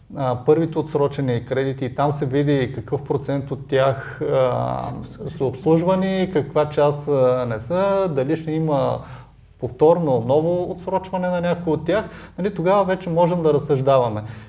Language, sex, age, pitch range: Bulgarian, male, 30-49, 130-160 Hz